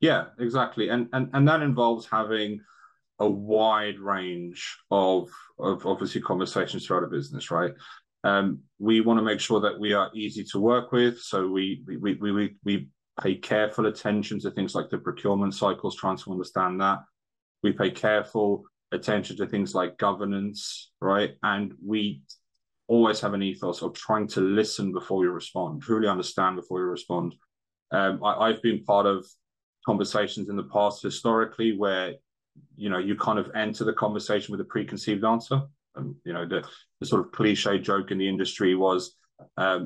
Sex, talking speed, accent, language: male, 180 wpm, British, English